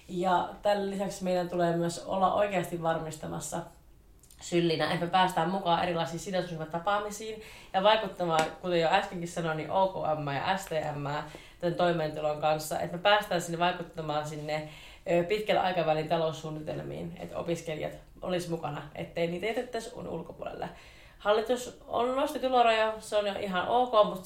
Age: 30-49